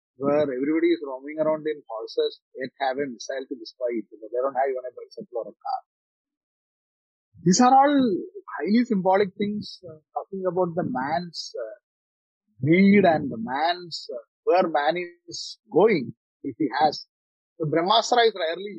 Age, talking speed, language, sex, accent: 30-49, 165 wpm, Hindi, male, native